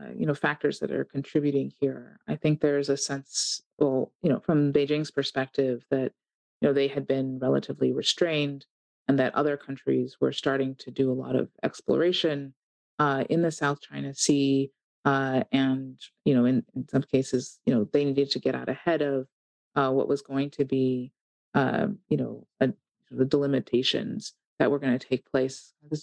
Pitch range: 135-155 Hz